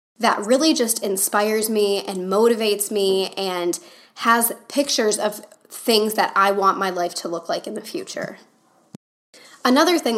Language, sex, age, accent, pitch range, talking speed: English, female, 10-29, American, 195-230 Hz, 155 wpm